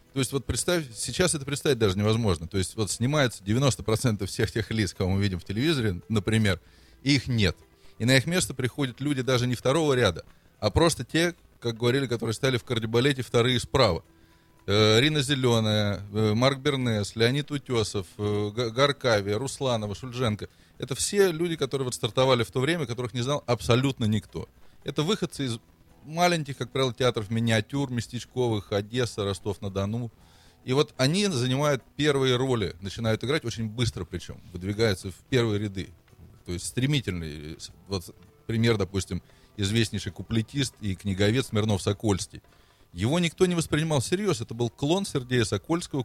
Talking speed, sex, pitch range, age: 155 wpm, male, 100-135 Hz, 20-39